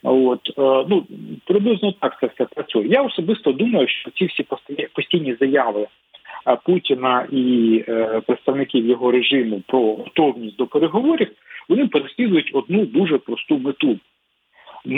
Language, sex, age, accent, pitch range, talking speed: Ukrainian, male, 40-59, native, 120-165 Hz, 125 wpm